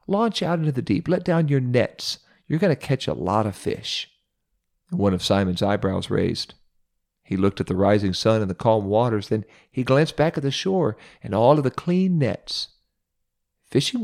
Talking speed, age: 195 wpm, 50-69